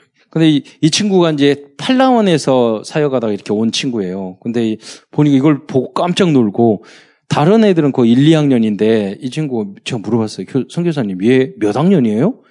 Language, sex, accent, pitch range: Korean, male, native, 105-140 Hz